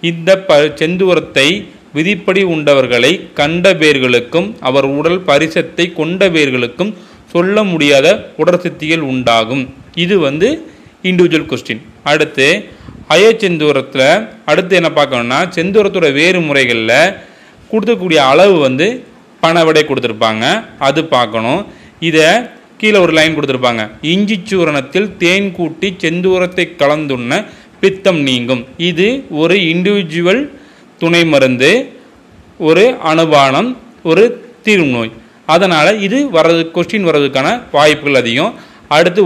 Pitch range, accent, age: 140-190 Hz, native, 30-49